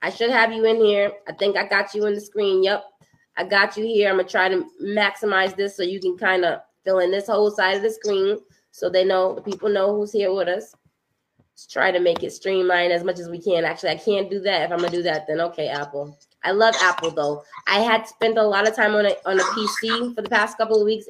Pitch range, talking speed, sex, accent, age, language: 180-225 Hz, 265 wpm, female, American, 20-39, English